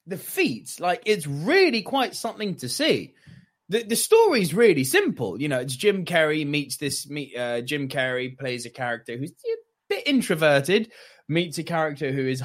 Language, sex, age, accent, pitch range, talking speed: English, male, 20-39, British, 130-205 Hz, 175 wpm